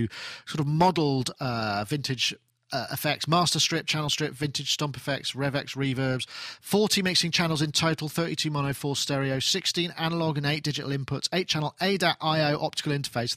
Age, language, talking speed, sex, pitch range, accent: 40-59, English, 165 wpm, male, 130-165 Hz, British